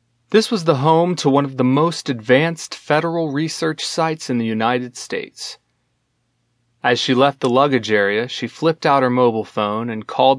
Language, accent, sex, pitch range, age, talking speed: English, American, male, 115-145 Hz, 30-49, 180 wpm